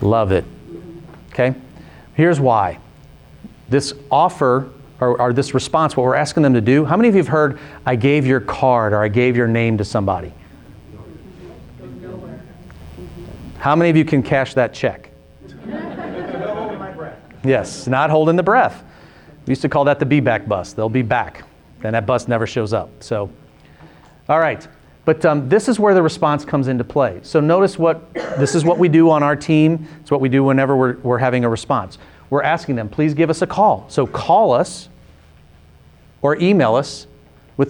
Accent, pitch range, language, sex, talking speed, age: American, 115-155 Hz, English, male, 180 wpm, 40-59